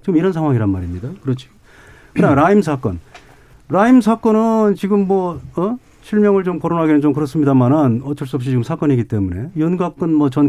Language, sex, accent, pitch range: Korean, male, native, 130-190 Hz